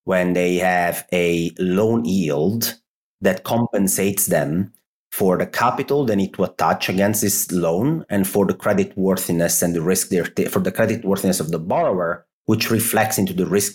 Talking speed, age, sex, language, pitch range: 175 wpm, 30-49, male, English, 90-120 Hz